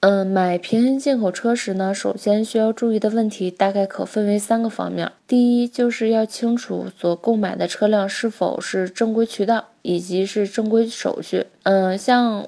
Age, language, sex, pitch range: 20-39, Chinese, female, 190-225 Hz